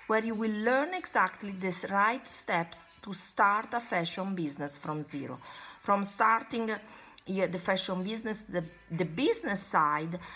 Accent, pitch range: Italian, 170-225 Hz